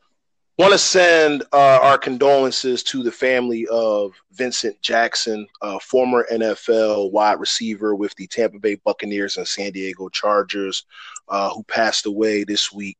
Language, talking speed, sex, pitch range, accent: English, 150 wpm, male, 110-145 Hz, American